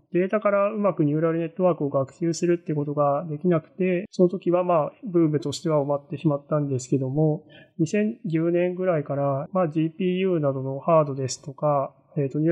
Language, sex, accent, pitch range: Japanese, male, native, 150-180 Hz